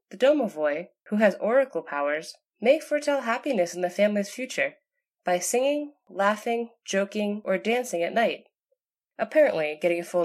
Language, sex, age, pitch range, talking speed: English, female, 20-39, 170-265 Hz, 145 wpm